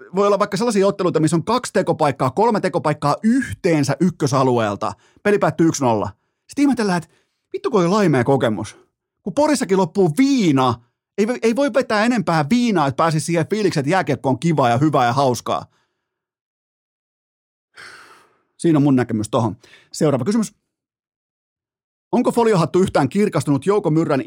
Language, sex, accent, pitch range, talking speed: Finnish, male, native, 135-195 Hz, 135 wpm